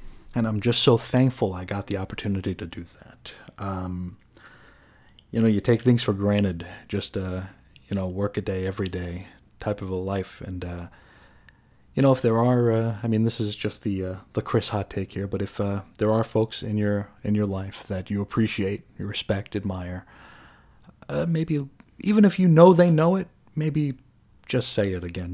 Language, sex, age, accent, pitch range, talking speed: English, male, 30-49, American, 95-120 Hz, 200 wpm